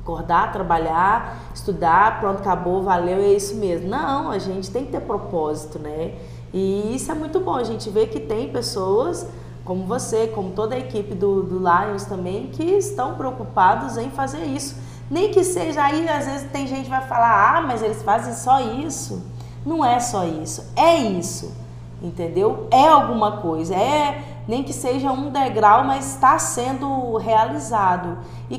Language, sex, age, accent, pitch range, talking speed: Portuguese, female, 20-39, Brazilian, 180-260 Hz, 170 wpm